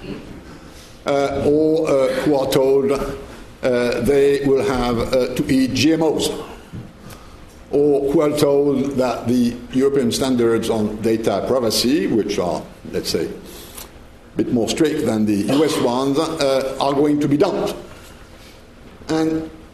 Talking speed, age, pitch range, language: 135 wpm, 60-79, 105-140 Hz, English